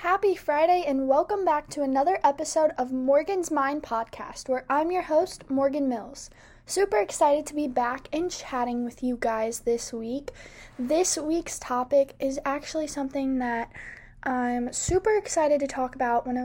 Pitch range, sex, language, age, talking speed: 245-305 Hz, female, English, 10-29, 165 wpm